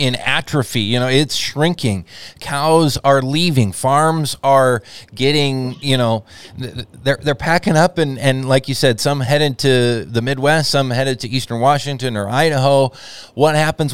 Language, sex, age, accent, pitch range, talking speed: English, male, 20-39, American, 120-145 Hz, 160 wpm